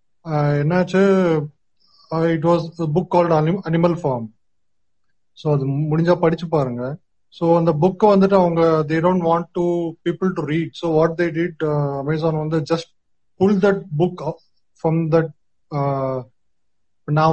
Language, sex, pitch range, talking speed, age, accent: Tamil, male, 130-170 Hz, 125 wpm, 20-39, native